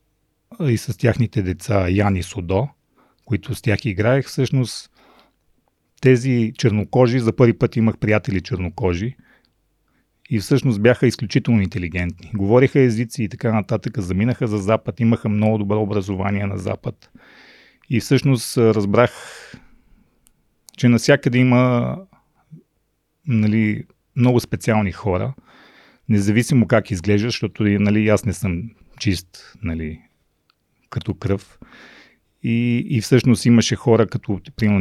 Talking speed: 115 wpm